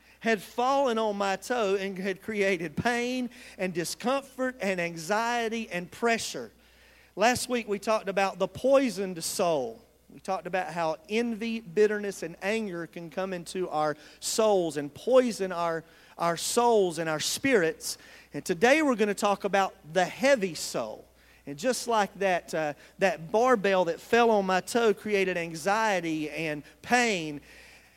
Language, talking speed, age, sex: English, 150 wpm, 40-59, male